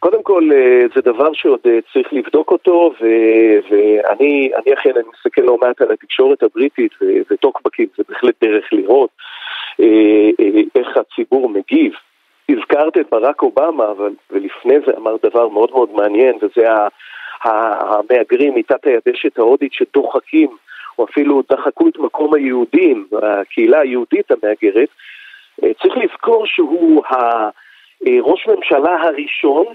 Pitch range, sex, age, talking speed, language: 305-410 Hz, male, 40-59, 120 wpm, Hebrew